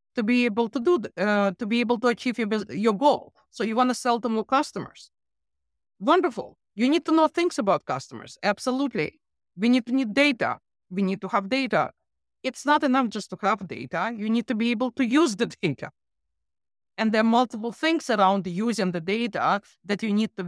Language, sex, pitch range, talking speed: English, female, 175-235 Hz, 210 wpm